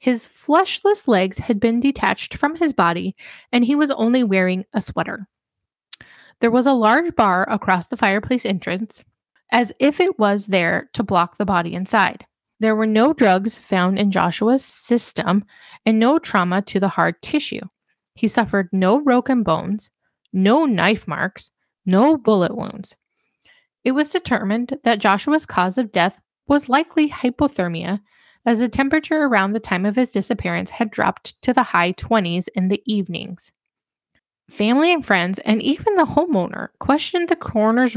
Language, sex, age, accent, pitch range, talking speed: English, female, 10-29, American, 195-260 Hz, 160 wpm